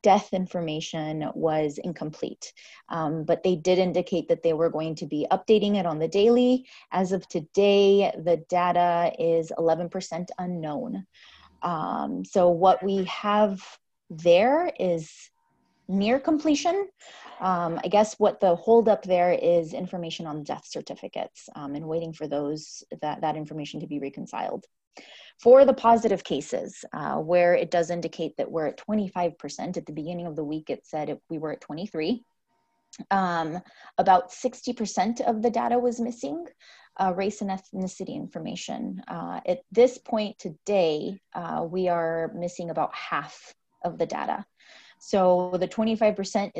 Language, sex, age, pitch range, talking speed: English, female, 20-39, 165-215 Hz, 150 wpm